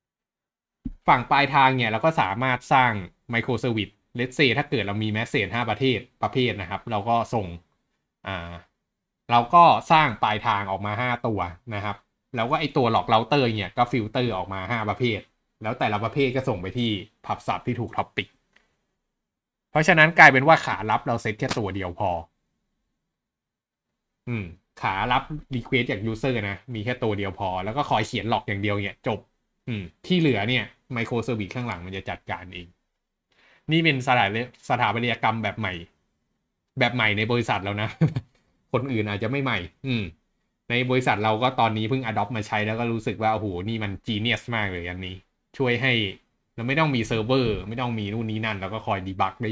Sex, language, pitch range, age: male, Thai, 105-125 Hz, 20-39